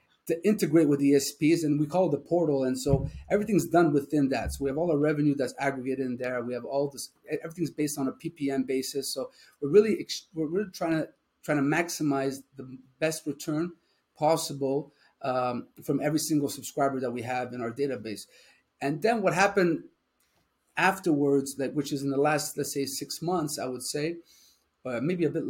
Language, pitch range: English, 135-165 Hz